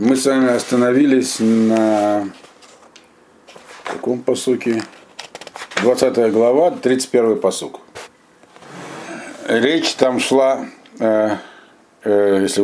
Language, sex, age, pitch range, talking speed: Russian, male, 50-69, 110-140 Hz, 80 wpm